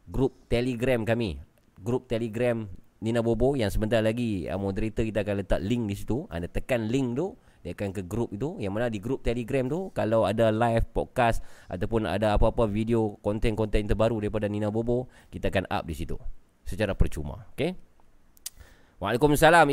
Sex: male